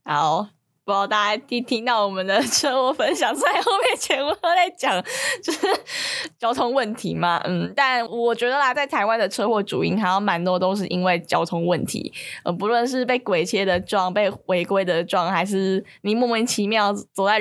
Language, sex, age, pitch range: Chinese, female, 10-29, 180-225 Hz